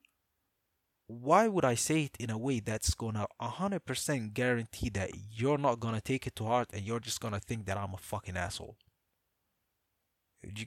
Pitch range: 95-130 Hz